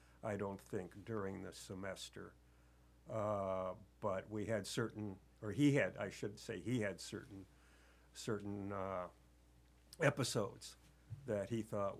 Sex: male